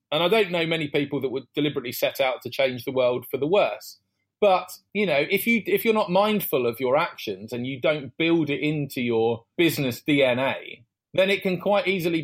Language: English